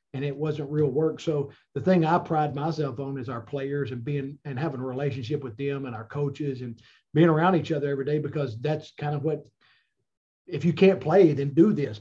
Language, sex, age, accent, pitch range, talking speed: English, male, 40-59, American, 140-165 Hz, 225 wpm